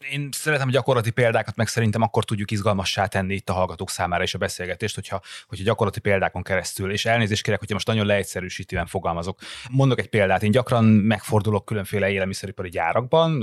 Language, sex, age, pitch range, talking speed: Hungarian, male, 30-49, 95-120 Hz, 180 wpm